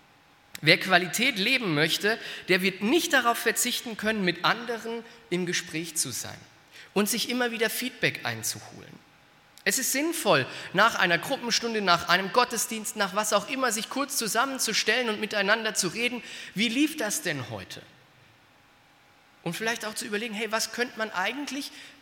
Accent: German